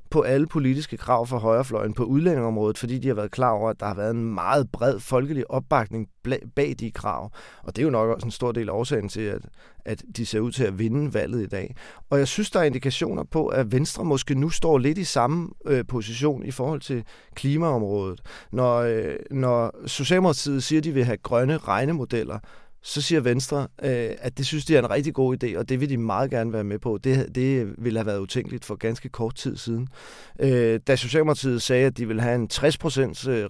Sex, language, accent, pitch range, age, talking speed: male, Danish, native, 115-145 Hz, 30-49, 210 wpm